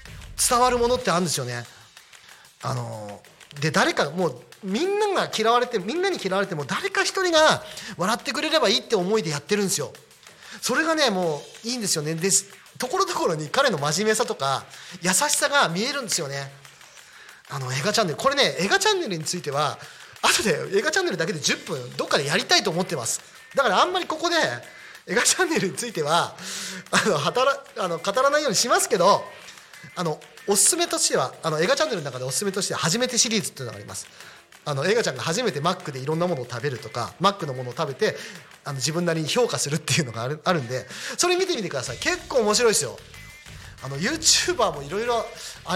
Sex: male